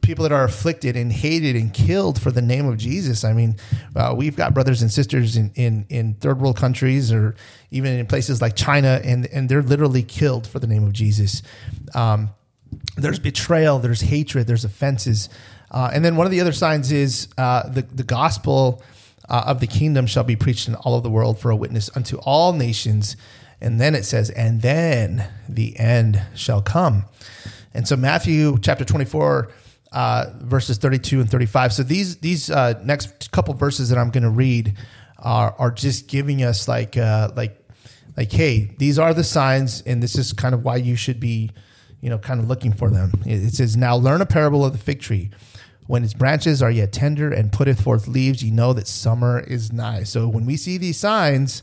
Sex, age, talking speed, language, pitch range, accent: male, 30-49, 205 wpm, English, 110-135 Hz, American